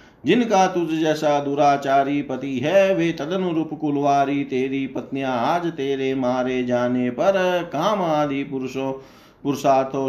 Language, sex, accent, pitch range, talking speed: Hindi, male, native, 130-170 Hz, 105 wpm